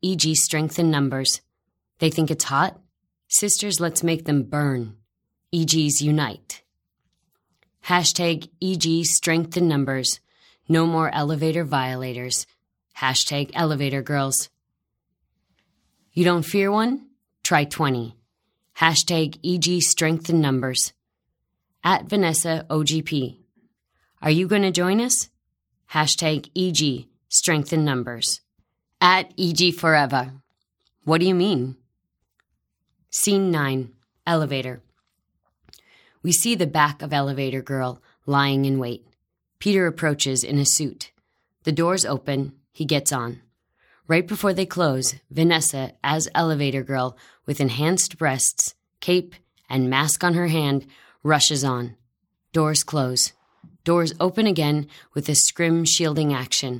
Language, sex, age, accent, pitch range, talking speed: English, female, 20-39, American, 135-170 Hz, 115 wpm